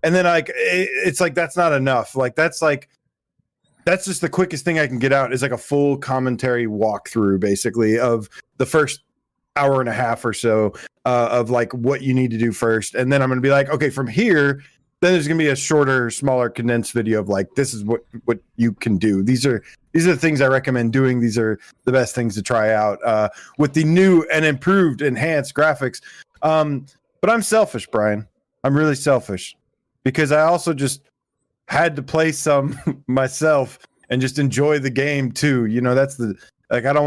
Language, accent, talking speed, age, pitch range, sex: English, American, 210 wpm, 20-39, 120-150 Hz, male